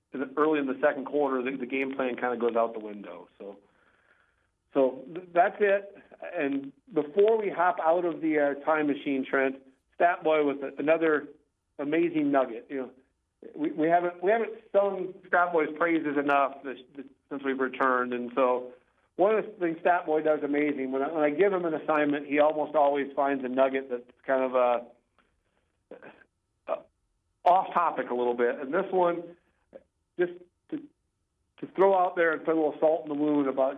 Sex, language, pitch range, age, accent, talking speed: male, English, 130-165 Hz, 50-69, American, 180 wpm